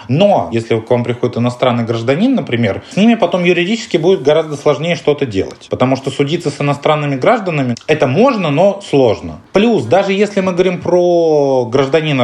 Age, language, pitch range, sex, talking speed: 20-39, Russian, 135-195 Hz, male, 165 wpm